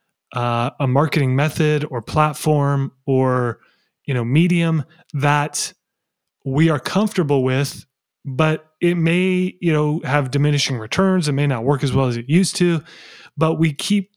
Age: 30-49